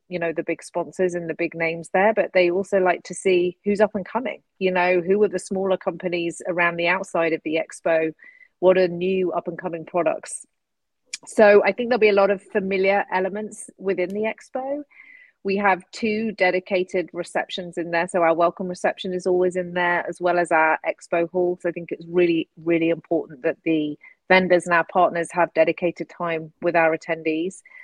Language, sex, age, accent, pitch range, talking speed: English, female, 30-49, British, 165-190 Hz, 200 wpm